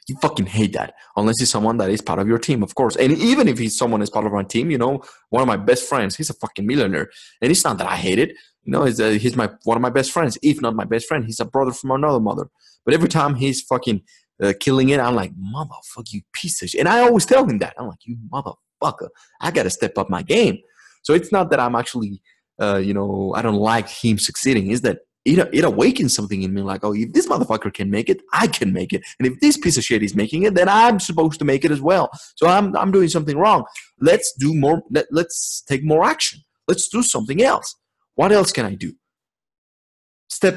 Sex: male